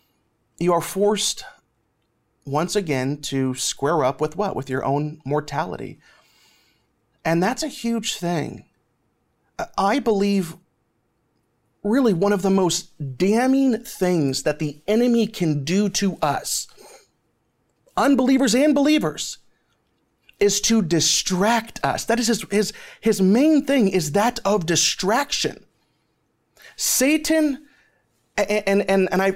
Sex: male